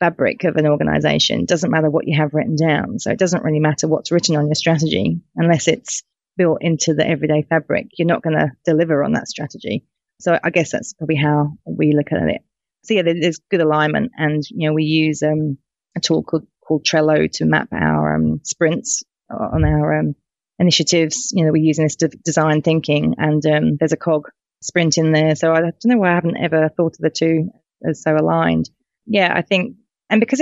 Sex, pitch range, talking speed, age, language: female, 150-165 Hz, 210 wpm, 30-49, English